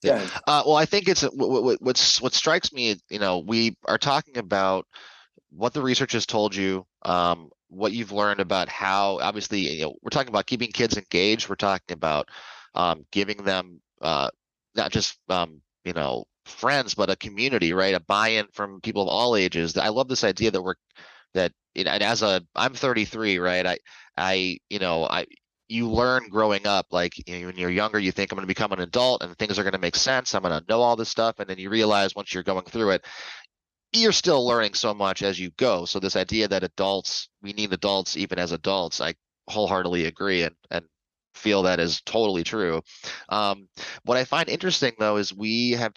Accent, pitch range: American, 95-115 Hz